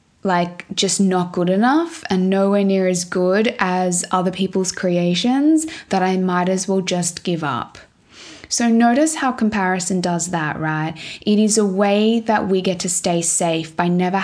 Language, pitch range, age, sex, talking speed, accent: English, 175-215 Hz, 20-39, female, 175 wpm, Australian